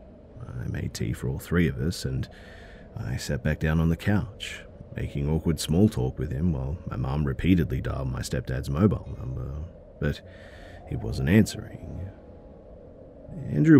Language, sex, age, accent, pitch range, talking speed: English, male, 40-59, Australian, 70-105 Hz, 155 wpm